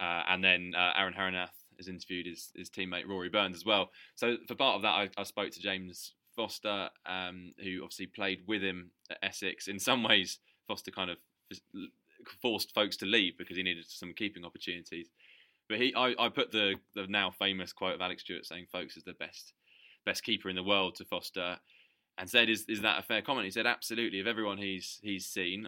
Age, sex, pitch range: 20-39, male, 90-105 Hz